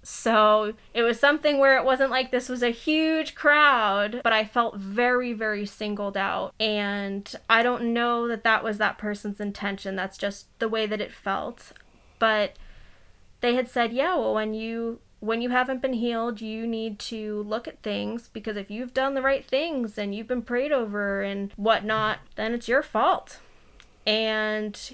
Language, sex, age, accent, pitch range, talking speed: English, female, 20-39, American, 210-250 Hz, 180 wpm